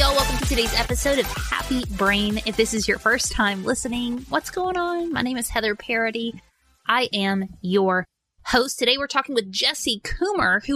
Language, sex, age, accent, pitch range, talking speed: English, female, 20-39, American, 200-275 Hz, 190 wpm